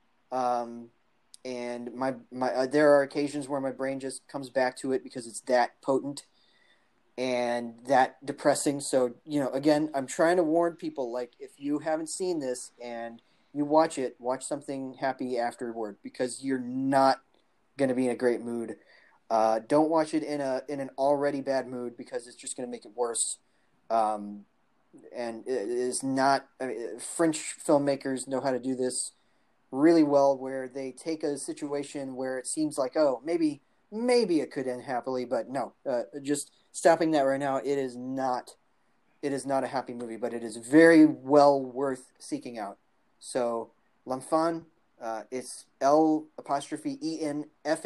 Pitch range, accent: 125-150 Hz, American